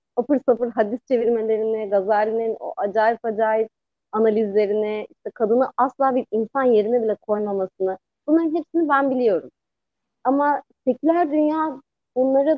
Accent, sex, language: native, female, Turkish